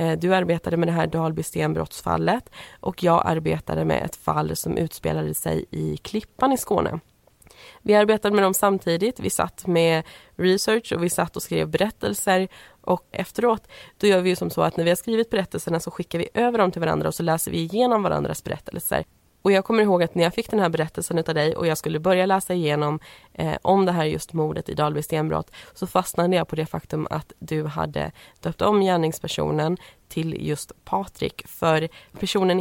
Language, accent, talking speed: Swedish, native, 195 wpm